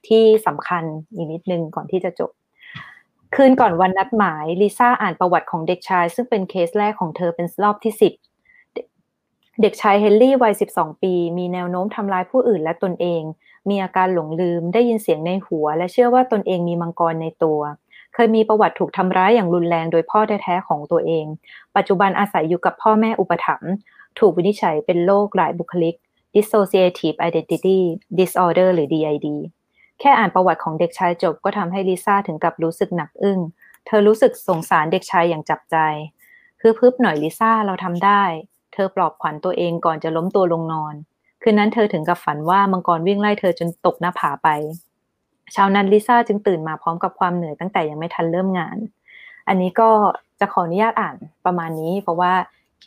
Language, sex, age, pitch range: Thai, female, 20-39, 170-210 Hz